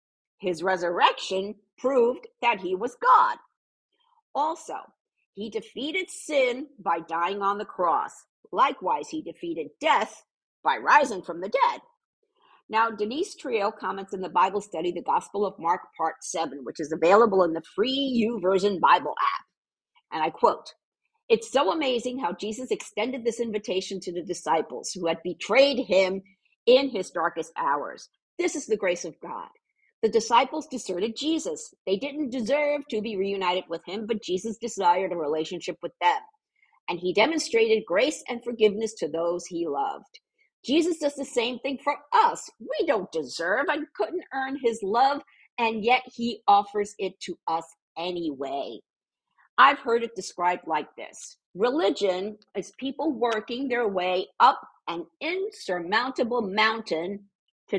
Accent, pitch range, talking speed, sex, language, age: American, 180-285 Hz, 150 wpm, female, English, 50-69